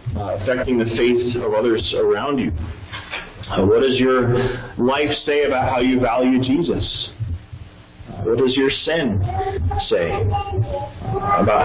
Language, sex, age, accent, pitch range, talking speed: English, male, 40-59, American, 100-130 Hz, 120 wpm